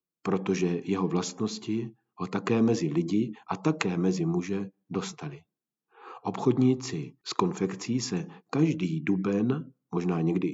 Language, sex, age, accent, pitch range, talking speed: Czech, male, 50-69, native, 100-145 Hz, 115 wpm